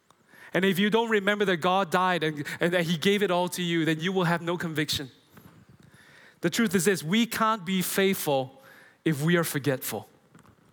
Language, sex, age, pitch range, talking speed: English, male, 20-39, 165-215 Hz, 195 wpm